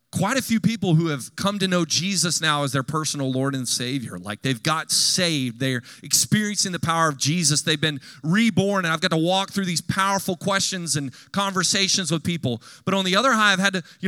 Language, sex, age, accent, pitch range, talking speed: English, male, 30-49, American, 140-195 Hz, 220 wpm